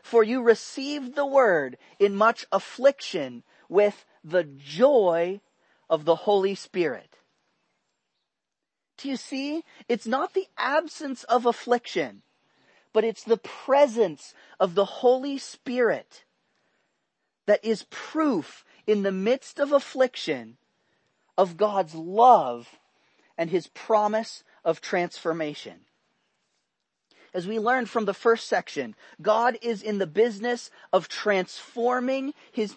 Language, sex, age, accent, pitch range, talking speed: English, male, 40-59, American, 190-260 Hz, 115 wpm